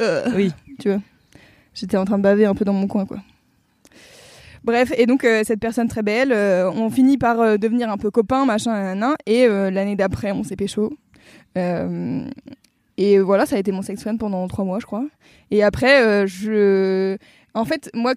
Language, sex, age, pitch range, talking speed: French, female, 20-39, 200-245 Hz, 200 wpm